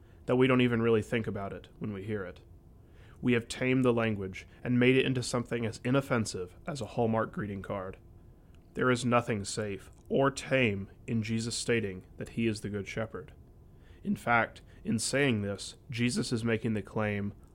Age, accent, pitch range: 30-49, American, 100-120 Hz